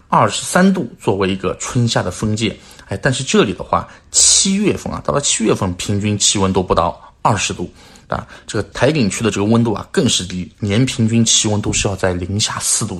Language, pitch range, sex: Chinese, 95-115 Hz, male